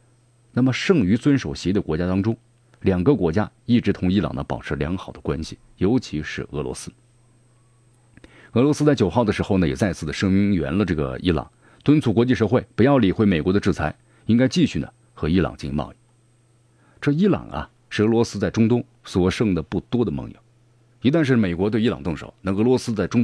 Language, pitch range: Chinese, 95-120 Hz